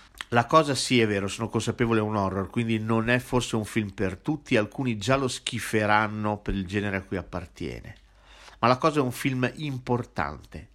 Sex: male